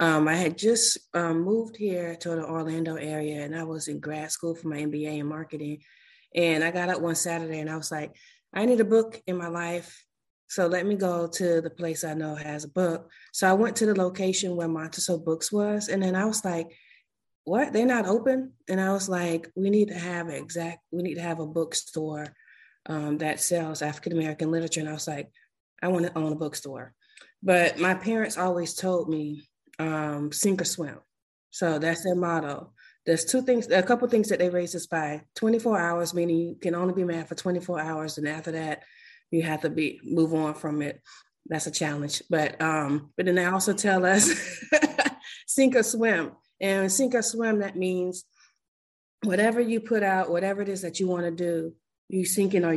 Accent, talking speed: American, 210 wpm